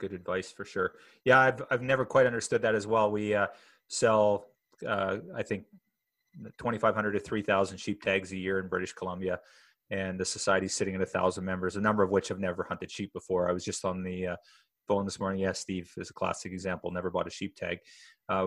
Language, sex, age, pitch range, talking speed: English, male, 30-49, 95-105 Hz, 225 wpm